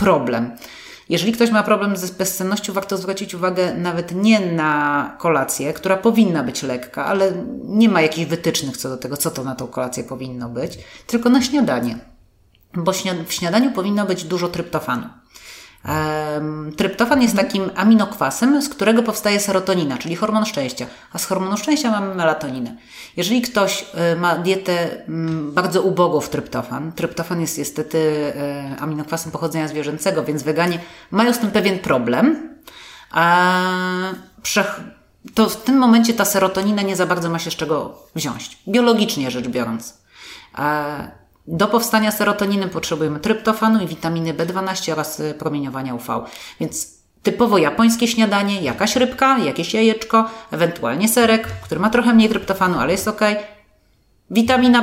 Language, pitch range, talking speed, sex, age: Polish, 155-215 Hz, 145 wpm, female, 30-49